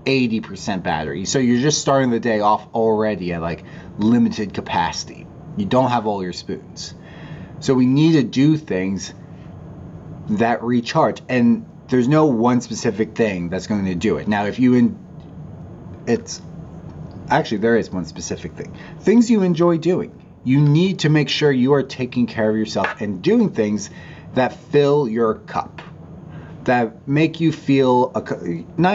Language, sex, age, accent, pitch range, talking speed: English, male, 30-49, American, 105-145 Hz, 160 wpm